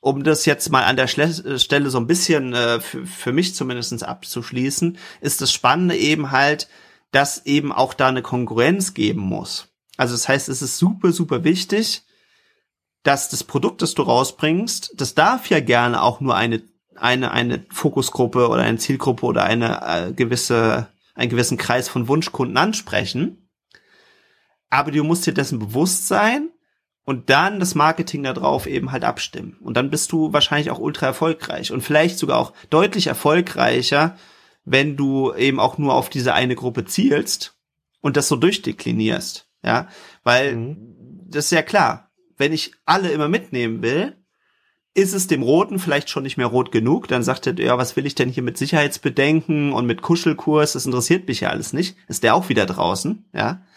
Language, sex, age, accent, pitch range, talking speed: German, male, 40-59, German, 130-175 Hz, 175 wpm